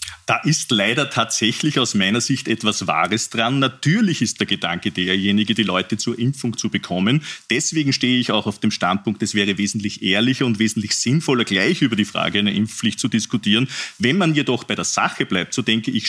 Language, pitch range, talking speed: German, 110-135 Hz, 200 wpm